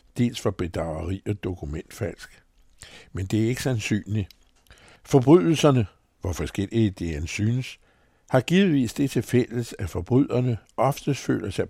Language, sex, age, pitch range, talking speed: Danish, male, 60-79, 100-130 Hz, 135 wpm